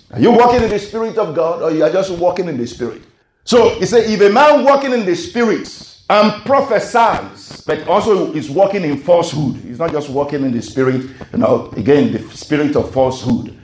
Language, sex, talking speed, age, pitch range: English, male, 215 wpm, 50-69, 120-200 Hz